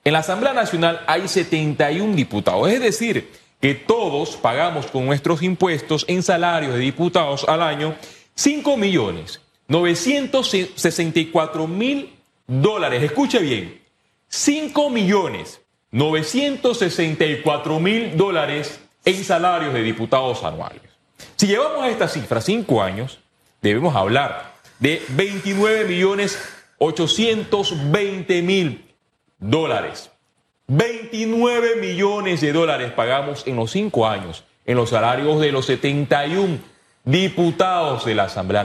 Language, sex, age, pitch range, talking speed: Spanish, male, 30-49, 130-190 Hz, 100 wpm